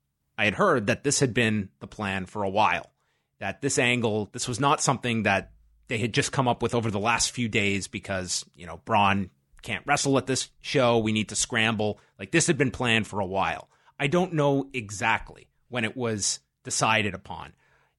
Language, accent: English, American